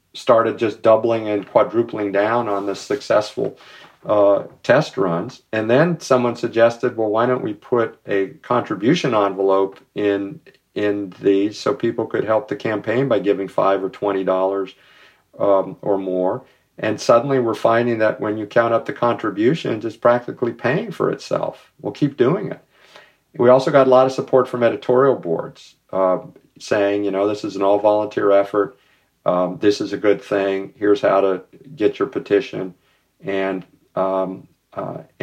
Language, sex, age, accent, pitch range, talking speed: English, male, 50-69, American, 95-110 Hz, 160 wpm